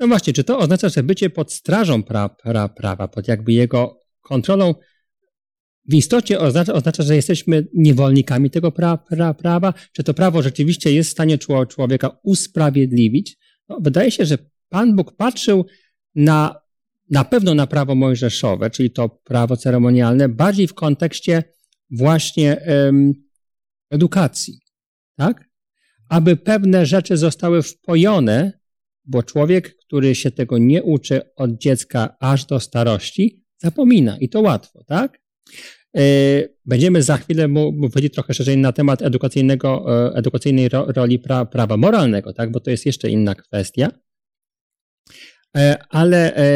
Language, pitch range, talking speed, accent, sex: Polish, 130-170 Hz, 125 wpm, native, male